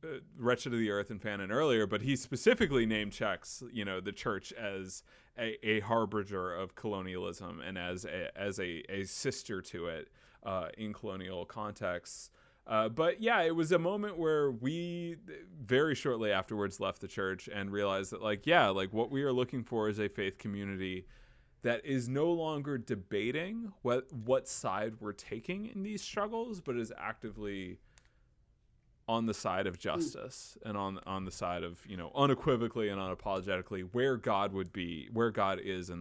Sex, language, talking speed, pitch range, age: male, English, 175 wpm, 100-140 Hz, 20-39